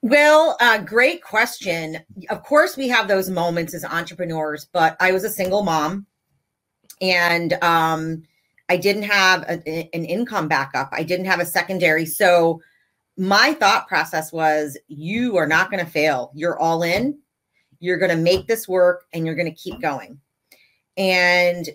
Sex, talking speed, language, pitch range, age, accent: female, 160 wpm, English, 160-195 Hz, 30-49, American